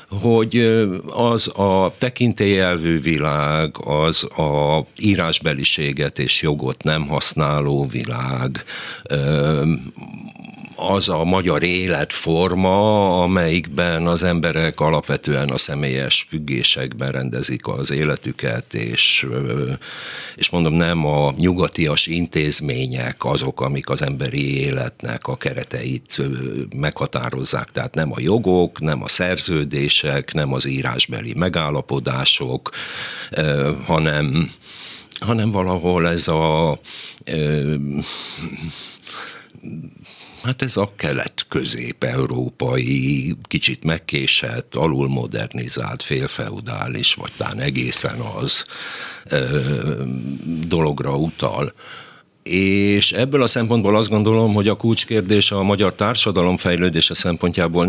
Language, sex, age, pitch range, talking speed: Hungarian, male, 60-79, 70-95 Hz, 90 wpm